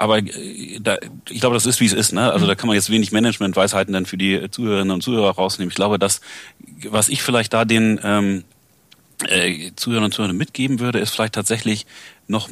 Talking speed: 200 wpm